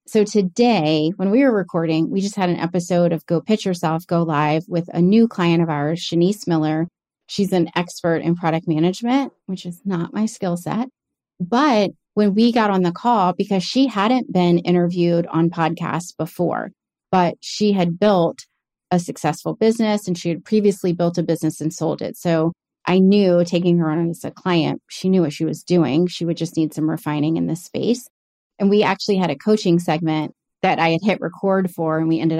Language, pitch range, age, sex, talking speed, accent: English, 165-200 Hz, 30-49, female, 200 wpm, American